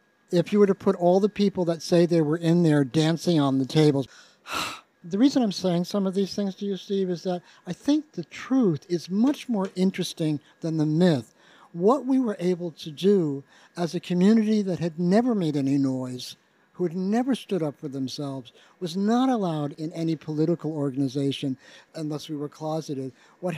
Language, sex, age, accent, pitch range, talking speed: English, male, 50-69, American, 155-195 Hz, 195 wpm